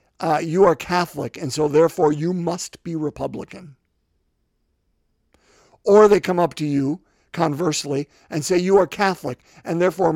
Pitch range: 150-200 Hz